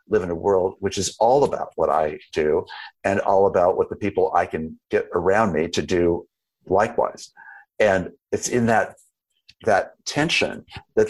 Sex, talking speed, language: male, 175 wpm, English